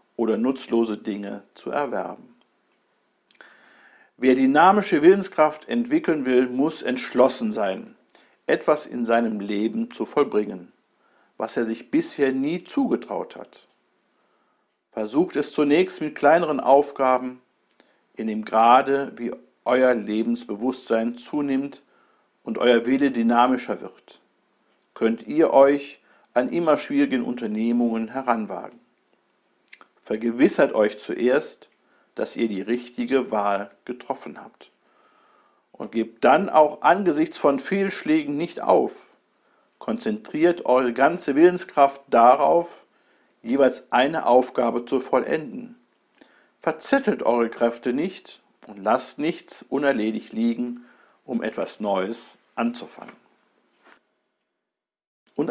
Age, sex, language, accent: 50-69, male, German, German